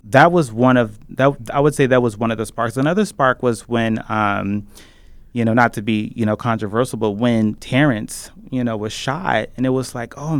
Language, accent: English, American